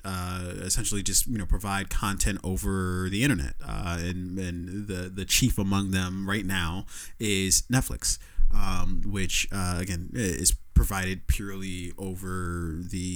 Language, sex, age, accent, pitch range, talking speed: English, male, 30-49, American, 85-100 Hz, 140 wpm